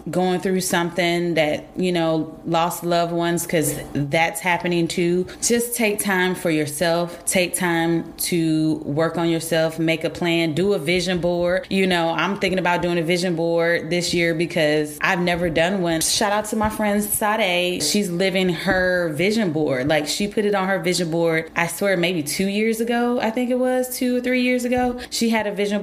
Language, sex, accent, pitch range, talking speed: English, female, American, 165-195 Hz, 195 wpm